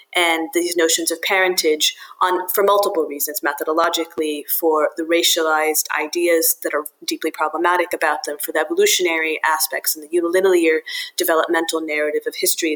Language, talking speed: English, 140 wpm